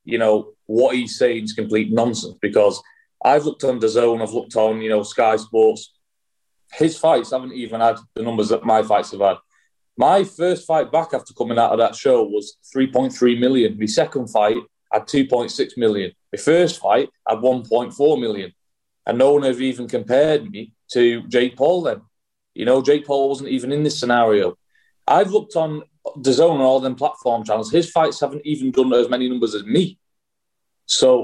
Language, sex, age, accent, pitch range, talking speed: English, male, 30-49, British, 115-155 Hz, 200 wpm